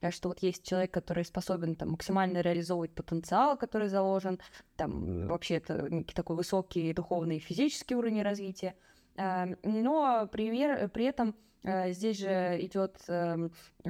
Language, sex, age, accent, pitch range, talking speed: Russian, female, 20-39, native, 180-210 Hz, 110 wpm